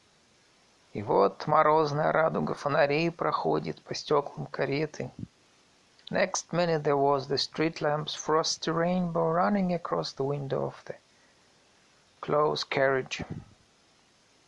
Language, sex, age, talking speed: Russian, male, 50-69, 110 wpm